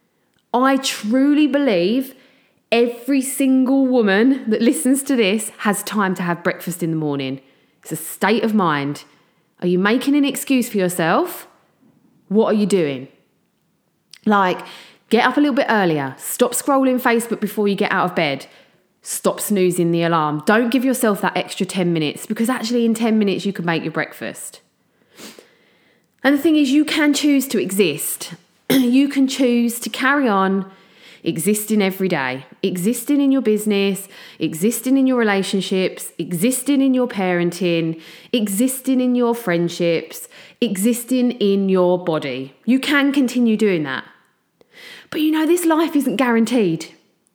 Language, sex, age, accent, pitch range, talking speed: English, female, 30-49, British, 185-265 Hz, 155 wpm